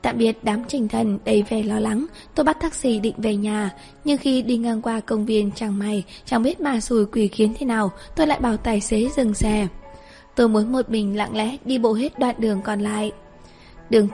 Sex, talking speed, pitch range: female, 225 wpm, 210-250 Hz